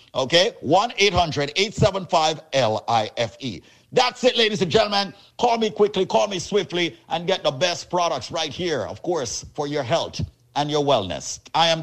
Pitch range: 140-200 Hz